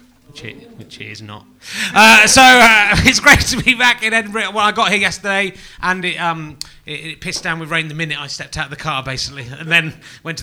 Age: 30-49